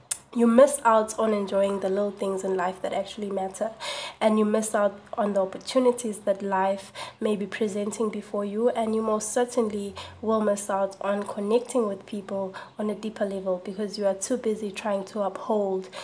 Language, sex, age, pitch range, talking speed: English, female, 20-39, 195-230 Hz, 185 wpm